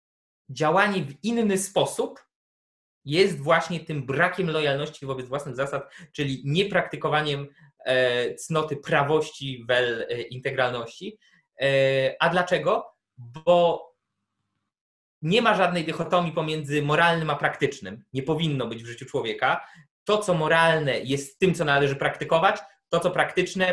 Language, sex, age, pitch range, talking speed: Polish, male, 20-39, 135-170 Hz, 115 wpm